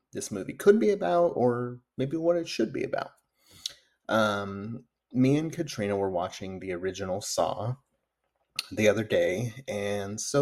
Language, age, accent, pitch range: English, 30-49, American, 100-130 Hz